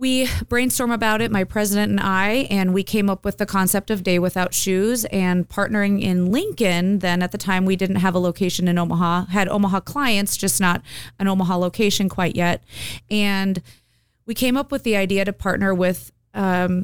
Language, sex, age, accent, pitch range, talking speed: English, female, 30-49, American, 175-205 Hz, 195 wpm